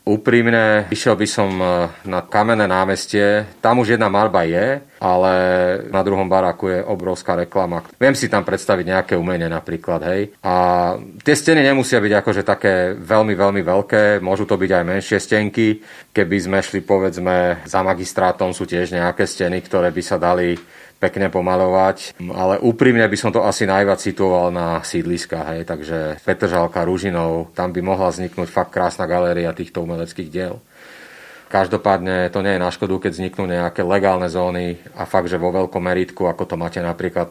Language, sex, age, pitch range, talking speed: Slovak, male, 30-49, 90-100 Hz, 165 wpm